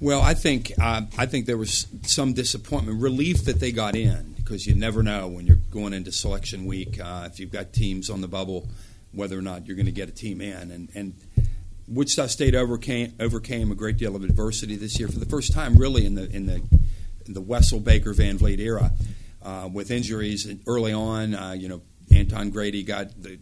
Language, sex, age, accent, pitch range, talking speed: English, male, 50-69, American, 95-115 Hz, 215 wpm